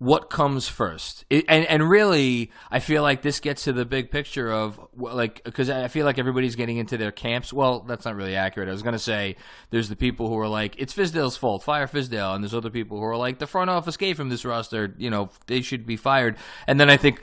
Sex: male